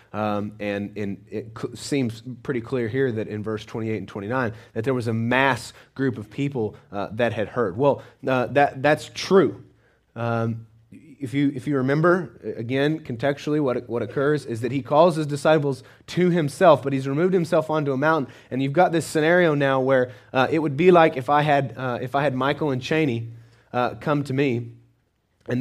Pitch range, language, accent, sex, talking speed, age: 125-165 Hz, English, American, male, 200 wpm, 30-49